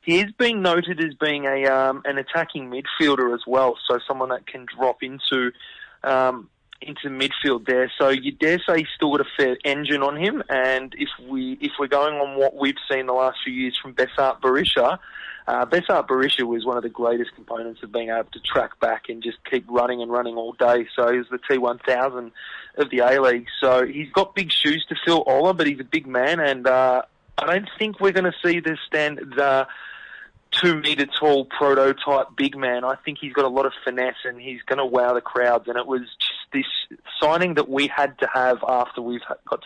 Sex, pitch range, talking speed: male, 125-150 Hz, 220 wpm